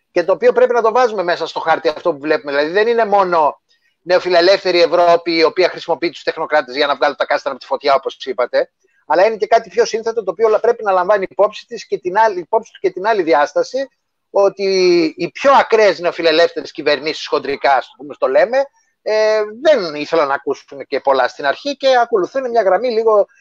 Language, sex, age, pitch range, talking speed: Greek, male, 30-49, 170-270 Hz, 200 wpm